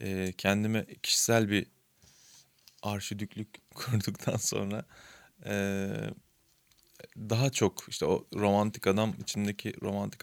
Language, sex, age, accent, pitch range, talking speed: Turkish, male, 20-39, native, 95-115 Hz, 80 wpm